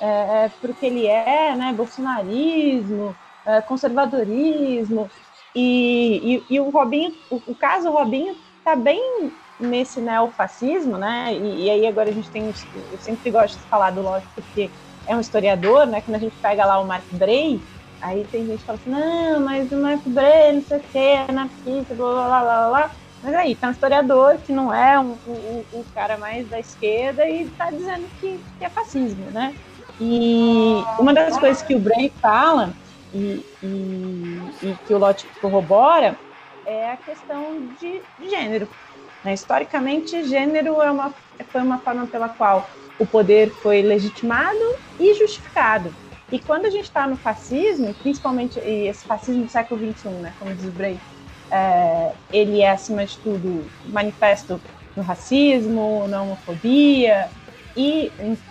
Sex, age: female, 20-39